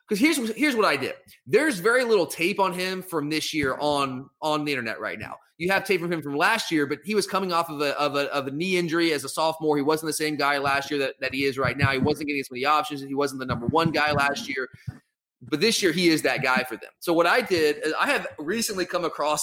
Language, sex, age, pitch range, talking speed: English, male, 30-49, 145-185 Hz, 285 wpm